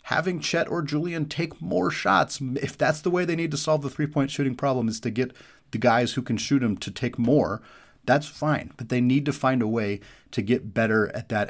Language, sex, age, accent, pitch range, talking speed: English, male, 30-49, American, 105-130 Hz, 235 wpm